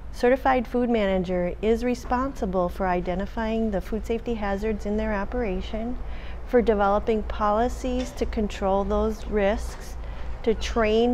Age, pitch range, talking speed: 40-59, 180-225 Hz, 125 wpm